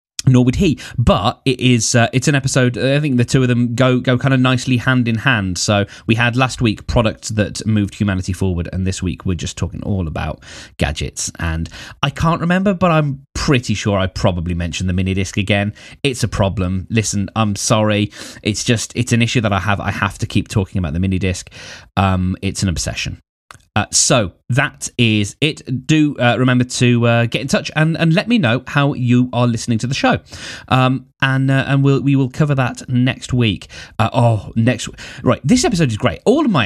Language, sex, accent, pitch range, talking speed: English, male, British, 100-130 Hz, 220 wpm